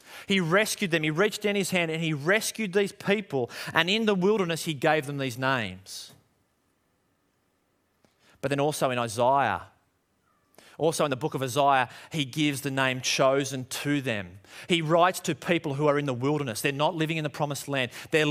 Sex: male